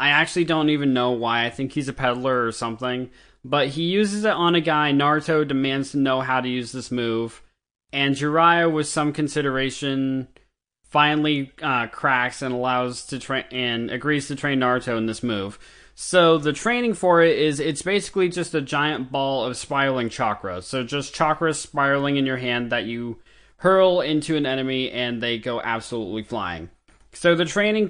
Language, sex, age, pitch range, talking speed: English, male, 20-39, 125-155 Hz, 175 wpm